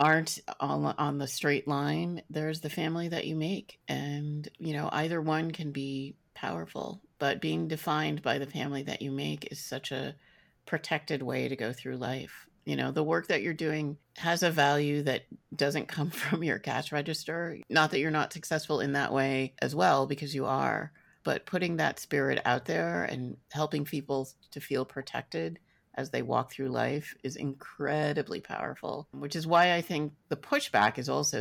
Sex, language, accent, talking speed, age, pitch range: female, English, American, 185 wpm, 30-49, 120-155 Hz